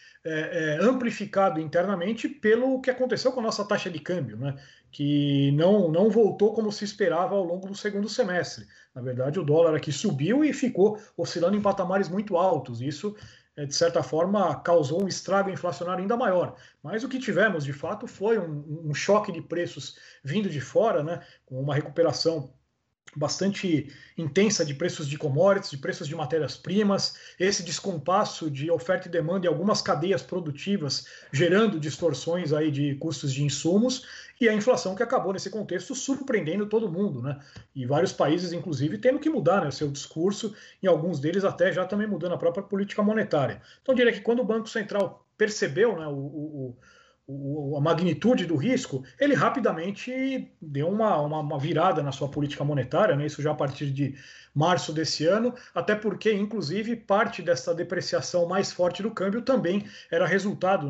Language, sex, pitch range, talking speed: Portuguese, male, 155-205 Hz, 175 wpm